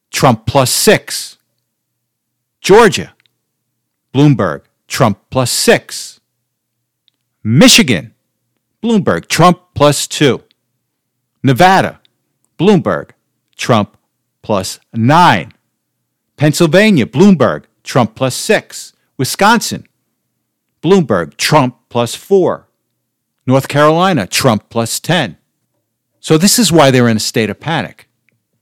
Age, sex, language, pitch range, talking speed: 50-69, male, English, 115-165 Hz, 90 wpm